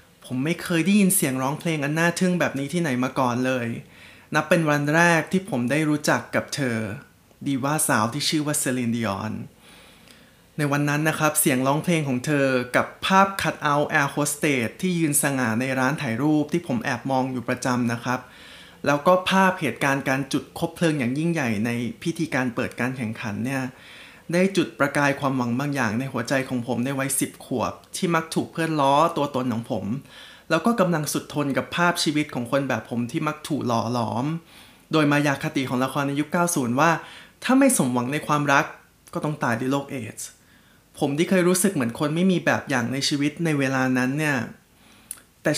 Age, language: 20-39, Thai